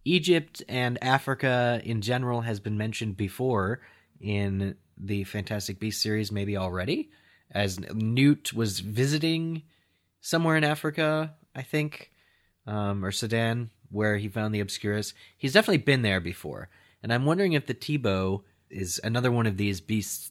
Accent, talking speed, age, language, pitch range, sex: American, 150 wpm, 30-49, English, 95-120 Hz, male